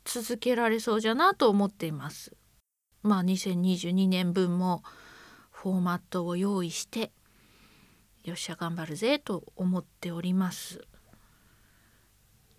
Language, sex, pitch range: Japanese, female, 165-225 Hz